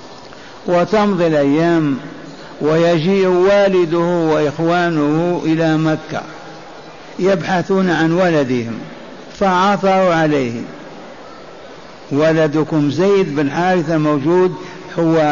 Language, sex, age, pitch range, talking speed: Arabic, male, 60-79, 150-185 Hz, 70 wpm